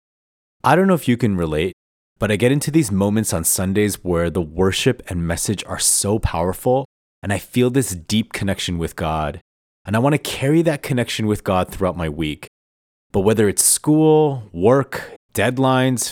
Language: English